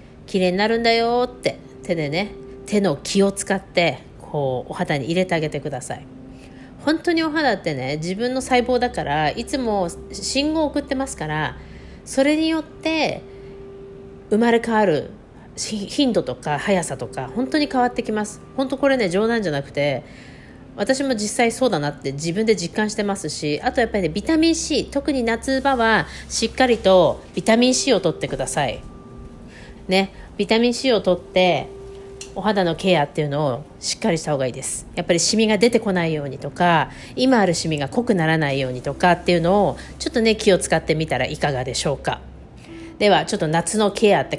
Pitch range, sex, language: 155-240 Hz, female, Japanese